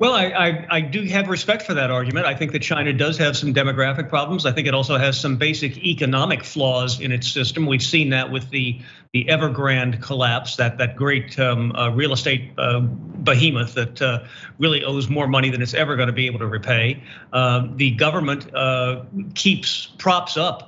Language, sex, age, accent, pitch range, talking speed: English, male, 50-69, American, 130-160 Hz, 200 wpm